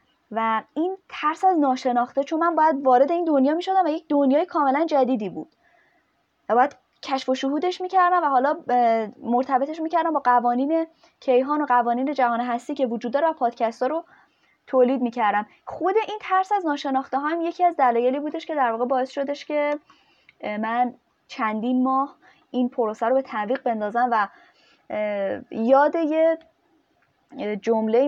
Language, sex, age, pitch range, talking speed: Persian, female, 20-39, 225-300 Hz, 150 wpm